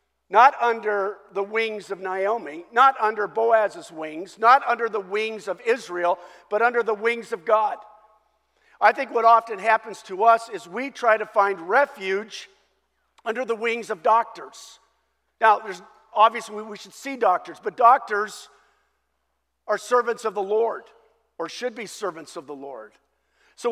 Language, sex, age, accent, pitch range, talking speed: English, male, 50-69, American, 200-235 Hz, 155 wpm